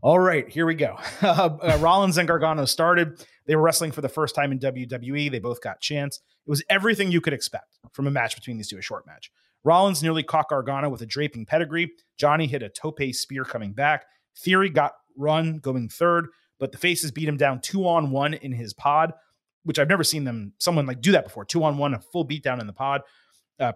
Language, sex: English, male